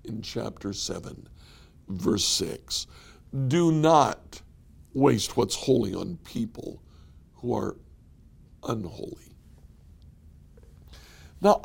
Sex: male